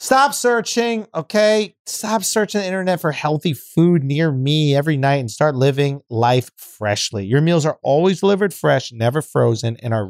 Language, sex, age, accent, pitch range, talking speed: English, male, 40-59, American, 115-160 Hz, 170 wpm